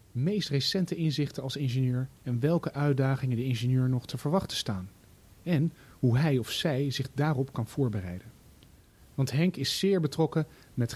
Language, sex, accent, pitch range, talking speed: Dutch, male, Dutch, 125-160 Hz, 160 wpm